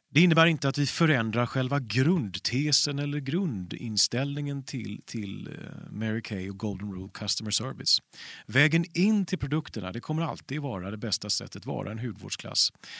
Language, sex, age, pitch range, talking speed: Swedish, male, 40-59, 110-155 Hz, 155 wpm